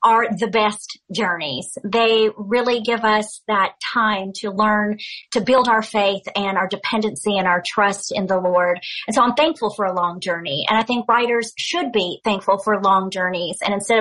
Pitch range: 195-225 Hz